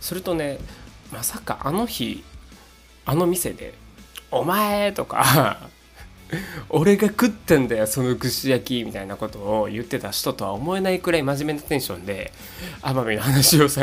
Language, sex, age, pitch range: Japanese, male, 20-39, 100-145 Hz